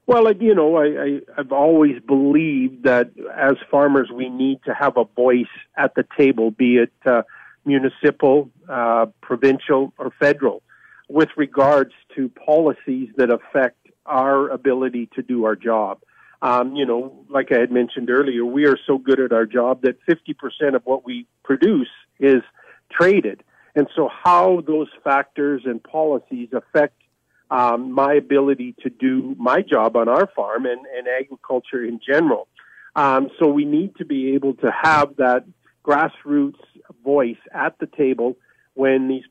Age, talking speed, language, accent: 50-69, 155 wpm, English, American